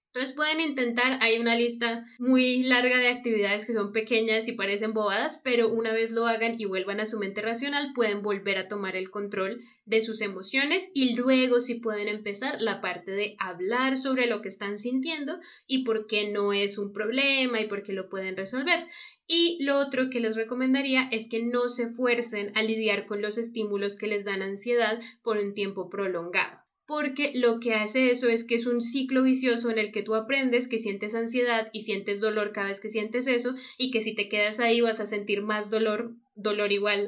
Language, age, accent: Spanish, 10-29, Colombian